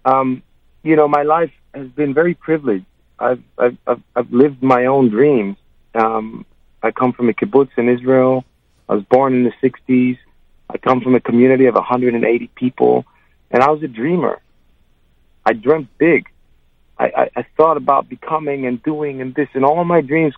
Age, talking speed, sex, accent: 40-59, 190 wpm, male, American